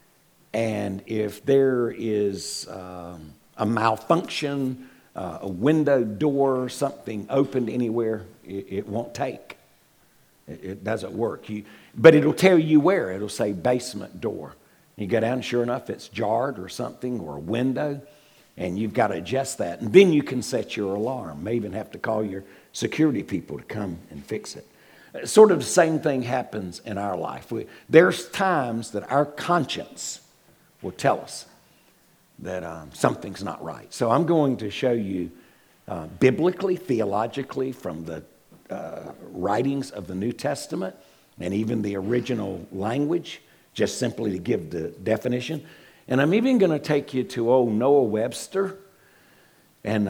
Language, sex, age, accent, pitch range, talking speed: English, male, 60-79, American, 100-145 Hz, 160 wpm